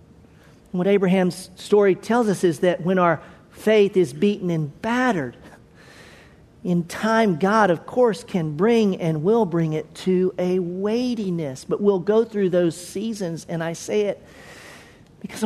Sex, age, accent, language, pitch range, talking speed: male, 50-69, American, English, 175-225 Hz, 150 wpm